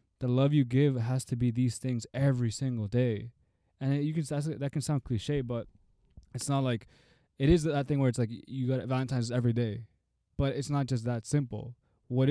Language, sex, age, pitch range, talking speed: English, male, 20-39, 110-125 Hz, 220 wpm